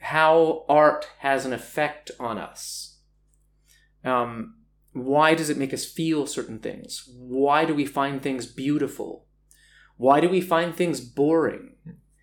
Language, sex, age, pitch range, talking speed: Czech, male, 30-49, 135-180 Hz, 135 wpm